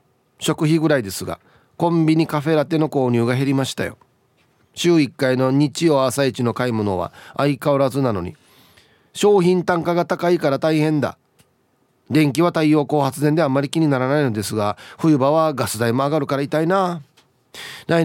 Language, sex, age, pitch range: Japanese, male, 30-49, 120-165 Hz